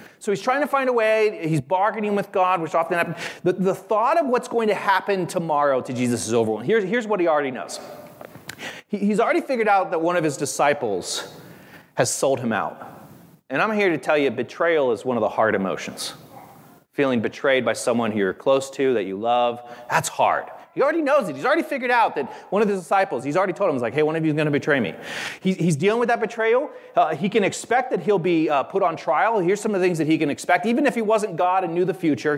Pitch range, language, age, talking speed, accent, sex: 150-230 Hz, English, 30-49, 245 wpm, American, male